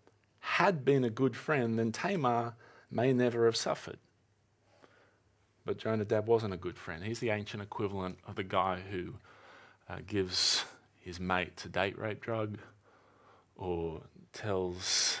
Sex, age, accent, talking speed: male, 30-49, Australian, 140 wpm